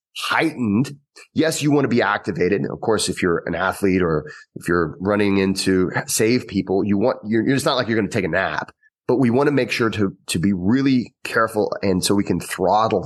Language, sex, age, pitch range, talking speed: English, male, 30-49, 95-120 Hz, 220 wpm